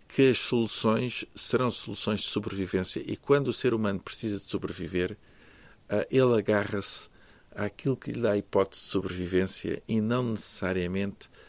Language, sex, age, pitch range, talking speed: Portuguese, male, 50-69, 100-120 Hz, 145 wpm